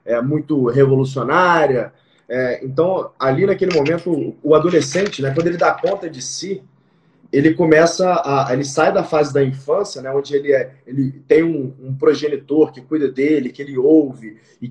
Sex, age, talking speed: male, 20-39, 170 wpm